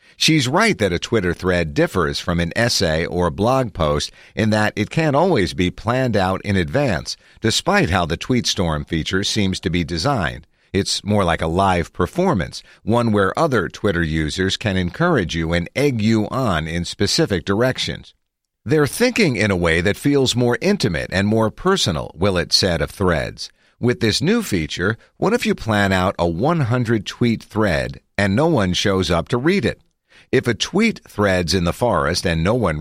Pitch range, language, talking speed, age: 85-125 Hz, English, 185 wpm, 50-69